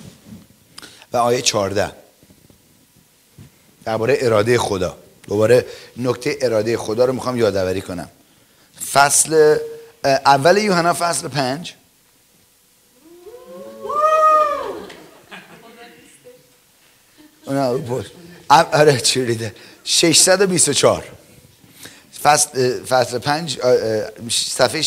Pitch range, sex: 125-185 Hz, male